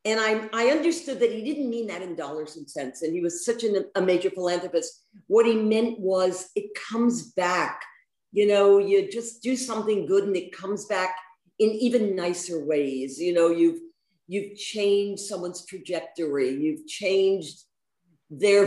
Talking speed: 165 wpm